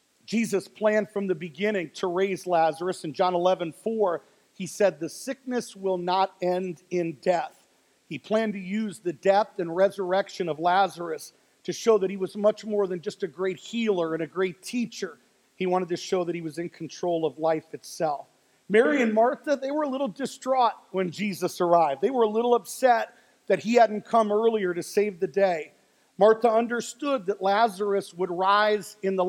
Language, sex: English, male